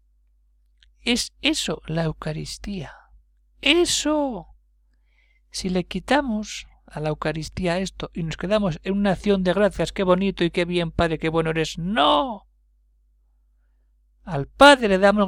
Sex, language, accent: male, Spanish, Spanish